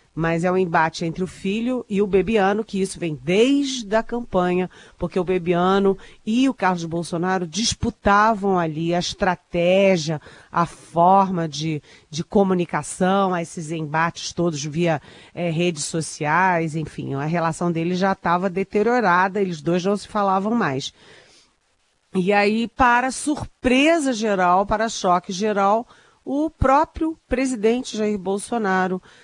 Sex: female